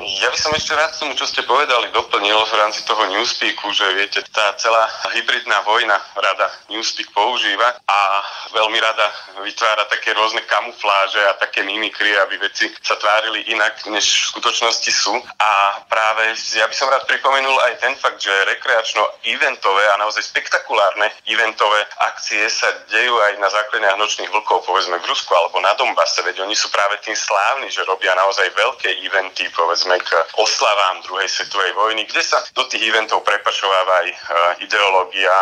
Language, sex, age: Slovak, male, 30-49